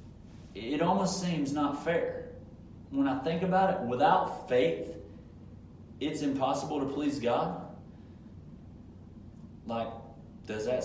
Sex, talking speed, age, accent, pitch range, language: male, 110 wpm, 40-59, American, 110-140 Hz, English